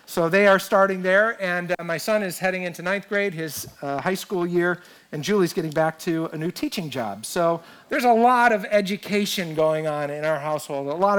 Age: 50-69